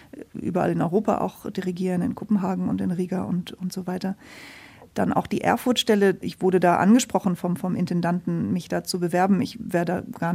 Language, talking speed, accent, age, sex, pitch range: German, 190 wpm, German, 30-49, female, 185-210 Hz